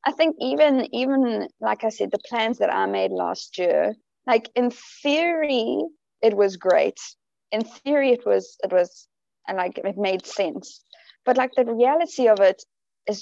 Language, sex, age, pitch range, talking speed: English, female, 20-39, 210-260 Hz, 170 wpm